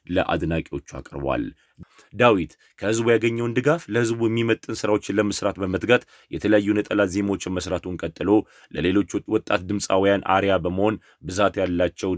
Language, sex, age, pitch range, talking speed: Amharic, male, 30-49, 85-110 Hz, 115 wpm